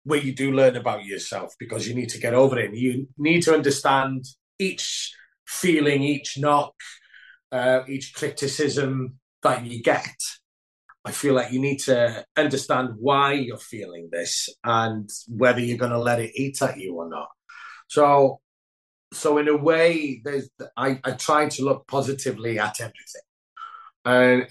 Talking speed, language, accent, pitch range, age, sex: 165 wpm, English, British, 125-150 Hz, 30-49, male